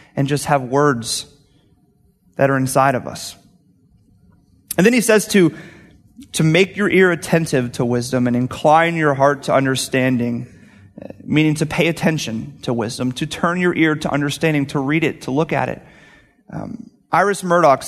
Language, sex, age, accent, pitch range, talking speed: English, male, 30-49, American, 140-165 Hz, 165 wpm